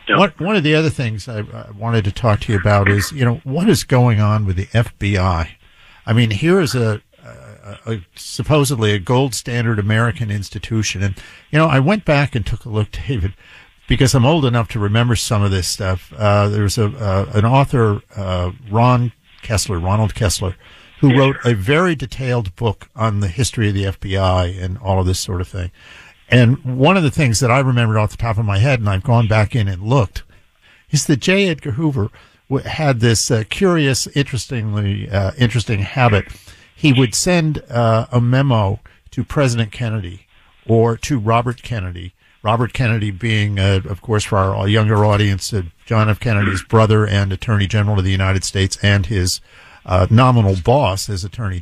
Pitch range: 100-125 Hz